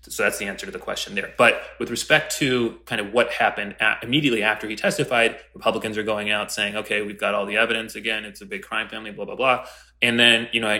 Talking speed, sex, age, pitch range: 245 wpm, male, 20-39, 100-130 Hz